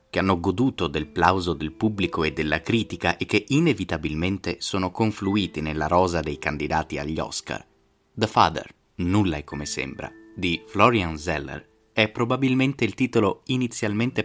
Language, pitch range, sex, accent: Italian, 80-105 Hz, male, native